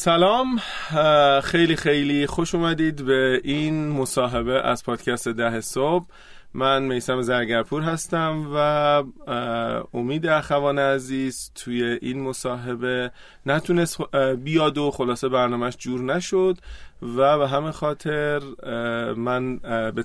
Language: Persian